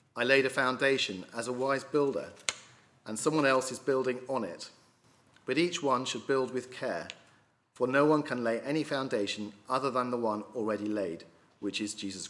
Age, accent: 40-59, British